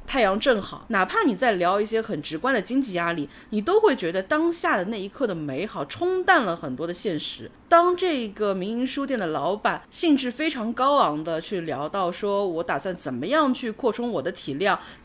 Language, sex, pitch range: Chinese, female, 170-255 Hz